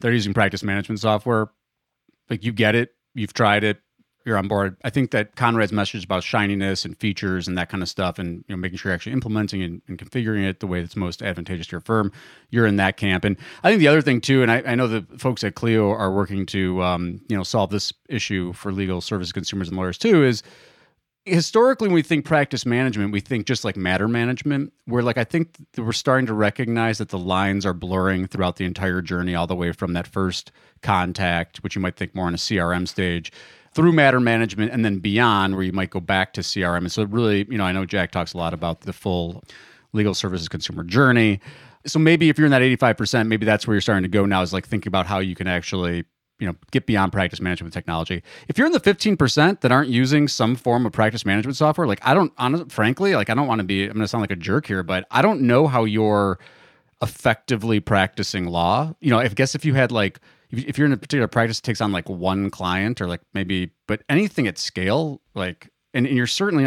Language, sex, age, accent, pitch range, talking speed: English, male, 30-49, American, 95-125 Hz, 240 wpm